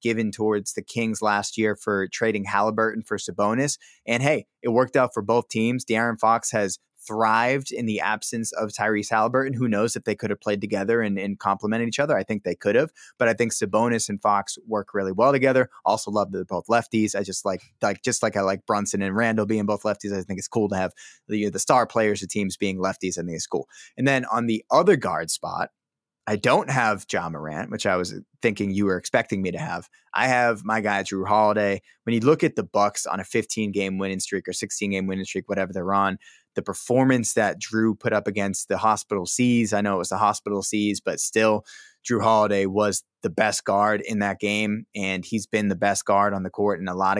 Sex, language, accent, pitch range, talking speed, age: male, English, American, 100-115 Hz, 230 wpm, 20-39